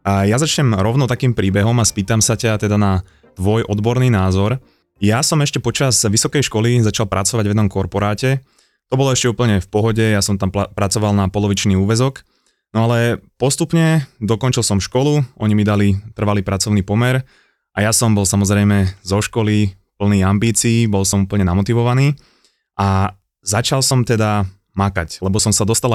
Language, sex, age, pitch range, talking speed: Slovak, male, 20-39, 100-120 Hz, 170 wpm